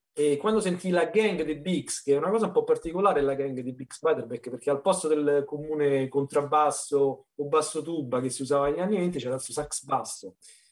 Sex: male